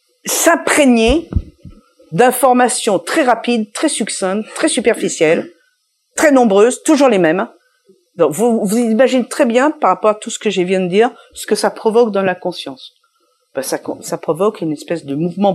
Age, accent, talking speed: 50-69, French, 170 wpm